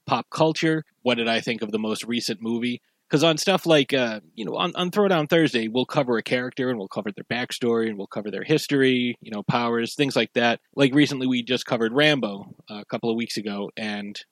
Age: 30-49